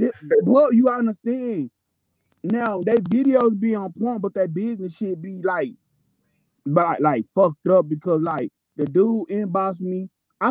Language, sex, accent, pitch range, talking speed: English, male, American, 195-260 Hz, 150 wpm